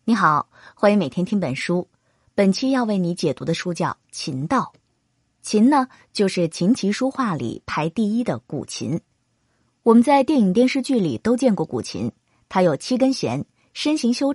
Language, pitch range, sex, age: Chinese, 160-235 Hz, female, 20-39